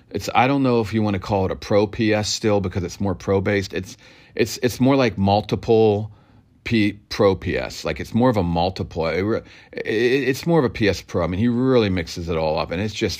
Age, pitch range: 40-59, 90-110 Hz